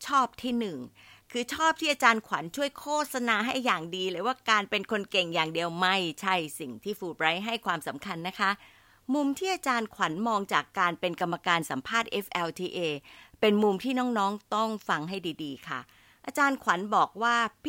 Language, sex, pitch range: Thai, female, 170-250 Hz